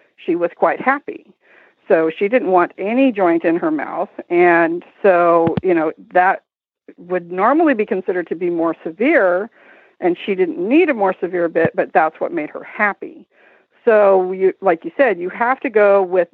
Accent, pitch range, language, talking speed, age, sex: American, 175-220 Hz, English, 180 wpm, 50-69, female